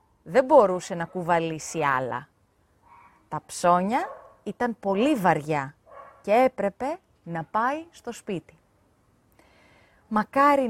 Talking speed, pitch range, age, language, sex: 95 wpm, 160-250 Hz, 30-49, Greek, female